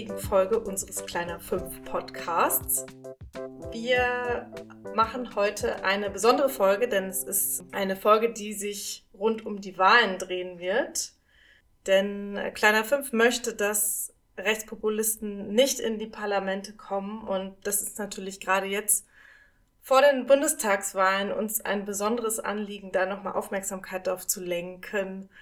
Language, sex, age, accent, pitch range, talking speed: German, female, 20-39, German, 185-225 Hz, 125 wpm